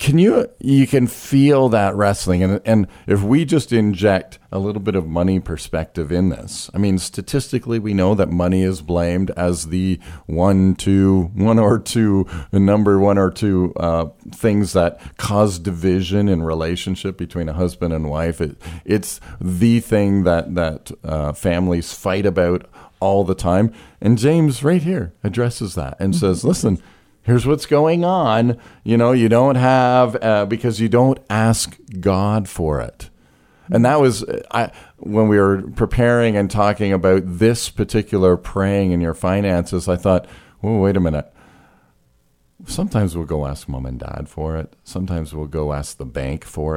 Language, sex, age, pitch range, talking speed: English, male, 40-59, 85-110 Hz, 170 wpm